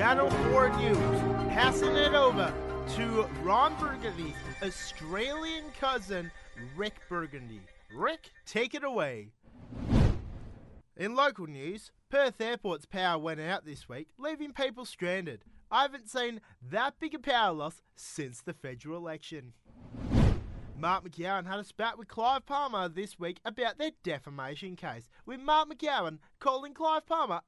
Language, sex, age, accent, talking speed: English, male, 30-49, Australian, 135 wpm